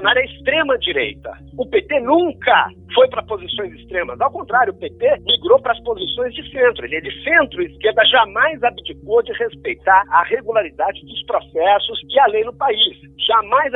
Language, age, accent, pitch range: Portuguese, 50-69, Brazilian, 285-455 Hz